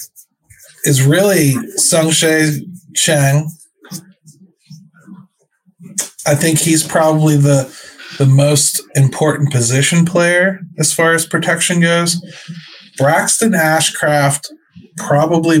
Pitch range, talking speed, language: 125-160 Hz, 90 wpm, English